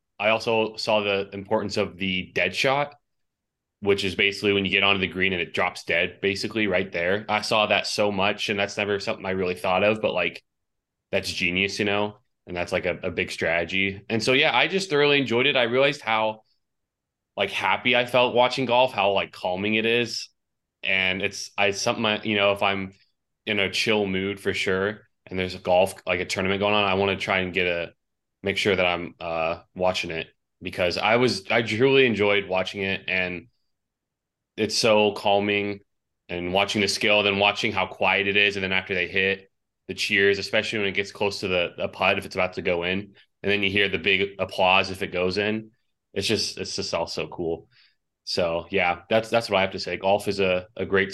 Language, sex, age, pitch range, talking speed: English, male, 20-39, 95-105 Hz, 220 wpm